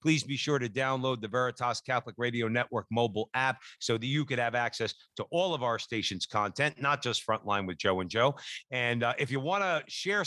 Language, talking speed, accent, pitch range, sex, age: English, 220 wpm, American, 125-160 Hz, male, 50-69